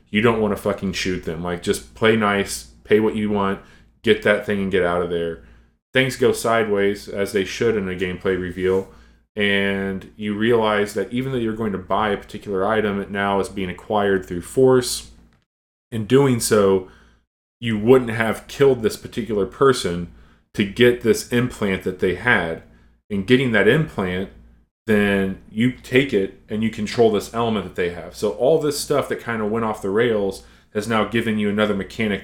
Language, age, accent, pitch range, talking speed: English, 30-49, American, 90-110 Hz, 190 wpm